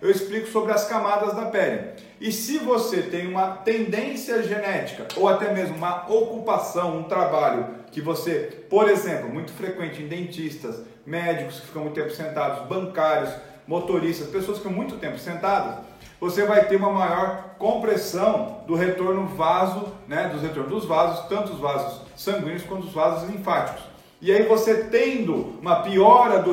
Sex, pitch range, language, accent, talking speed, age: male, 165-210 Hz, Portuguese, Brazilian, 160 wpm, 40-59